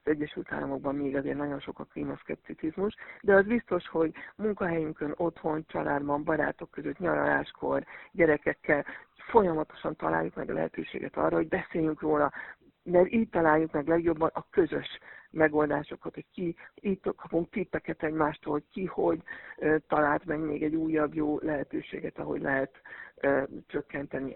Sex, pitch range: female, 155-195 Hz